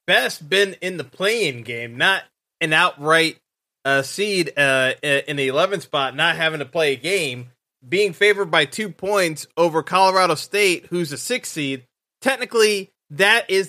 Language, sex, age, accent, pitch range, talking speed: English, male, 20-39, American, 155-200 Hz, 160 wpm